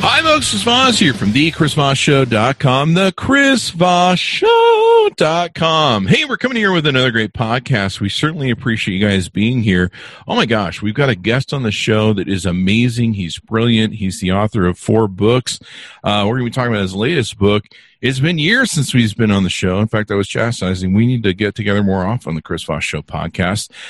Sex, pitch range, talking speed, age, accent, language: male, 100-155 Hz, 205 wpm, 40-59, American, English